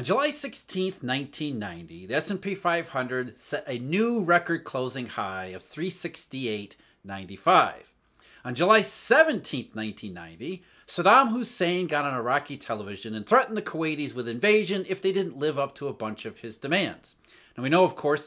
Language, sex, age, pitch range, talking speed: English, male, 40-59, 130-200 Hz, 155 wpm